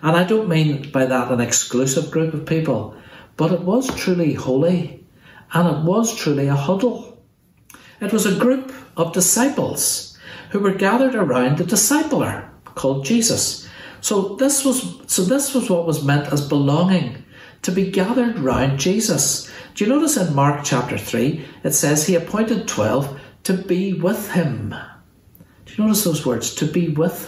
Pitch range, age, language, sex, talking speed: 135-185 Hz, 60-79, English, male, 165 wpm